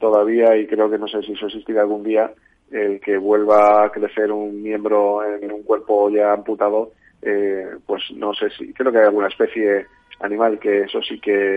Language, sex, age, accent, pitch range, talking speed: Spanish, male, 30-49, Spanish, 105-115 Hz, 195 wpm